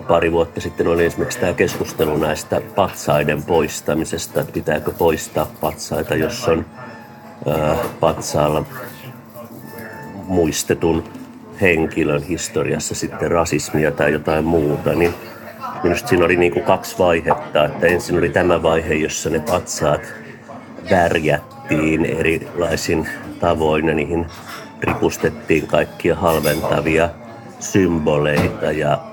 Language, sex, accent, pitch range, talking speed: Finnish, male, native, 85-105 Hz, 105 wpm